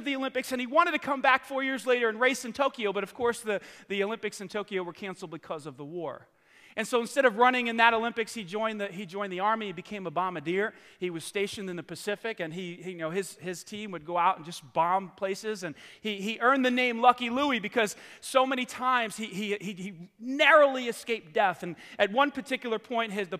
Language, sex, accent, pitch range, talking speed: English, male, American, 185-240 Hz, 245 wpm